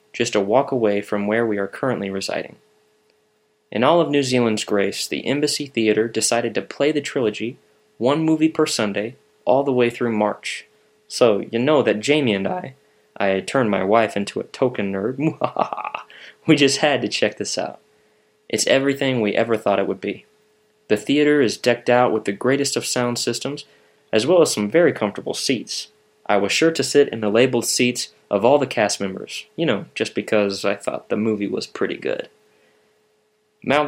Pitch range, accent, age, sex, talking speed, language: 105-145 Hz, American, 20-39, male, 190 wpm, English